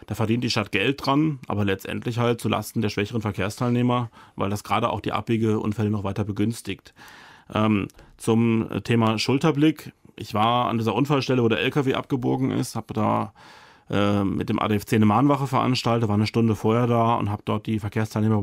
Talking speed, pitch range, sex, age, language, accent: 180 wpm, 105-120 Hz, male, 30-49, German, German